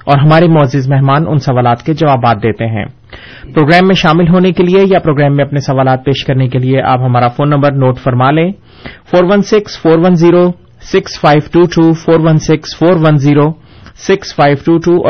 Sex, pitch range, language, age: male, 135-165 Hz, Urdu, 30-49